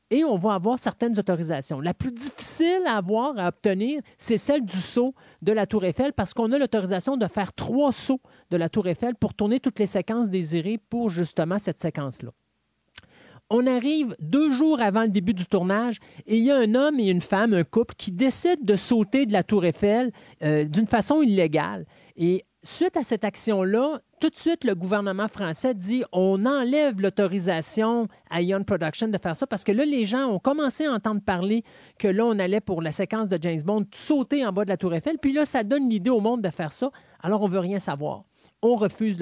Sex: male